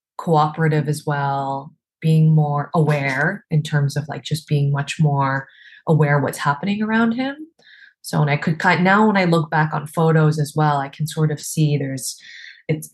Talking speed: 185 wpm